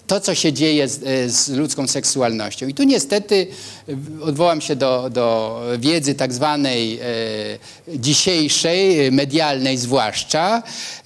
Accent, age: native, 50-69